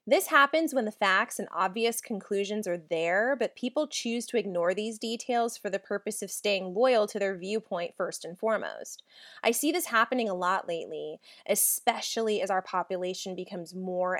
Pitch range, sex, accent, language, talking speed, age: 185-250 Hz, female, American, English, 175 wpm, 20-39